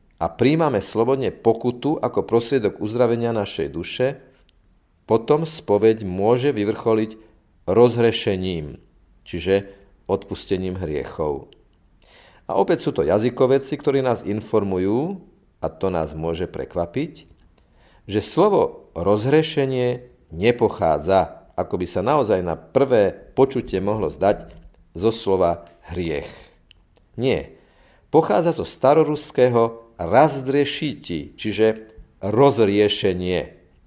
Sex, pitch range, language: male, 90-130 Hz, Slovak